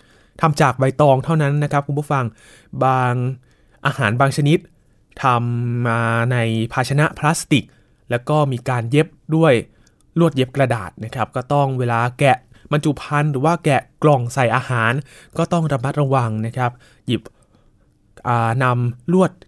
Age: 20-39